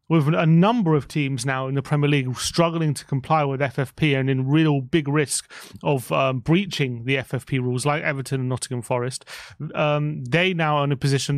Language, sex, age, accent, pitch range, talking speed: English, male, 30-49, British, 135-160 Hz, 200 wpm